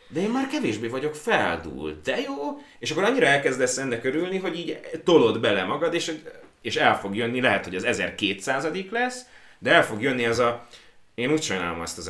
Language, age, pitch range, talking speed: Hungarian, 30-49, 100-150 Hz, 200 wpm